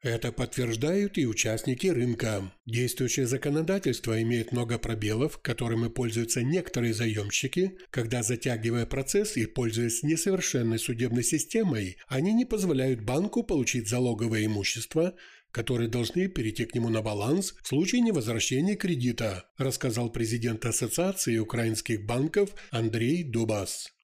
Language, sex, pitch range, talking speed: Ukrainian, male, 115-160 Hz, 115 wpm